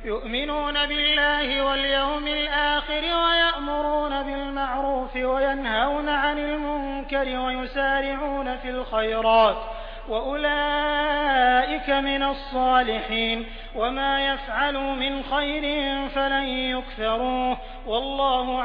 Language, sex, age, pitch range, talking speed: Hindi, male, 30-49, 250-290 Hz, 70 wpm